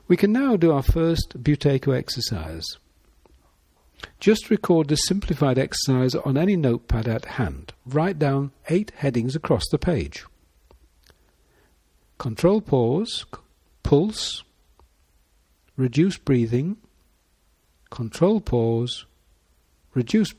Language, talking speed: English, 95 wpm